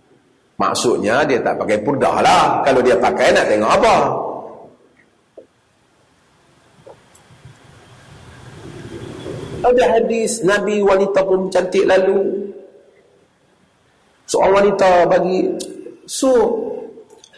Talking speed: 80 wpm